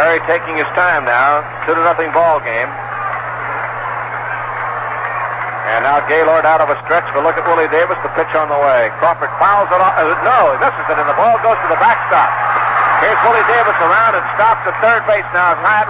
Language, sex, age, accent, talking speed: English, male, 50-69, American, 210 wpm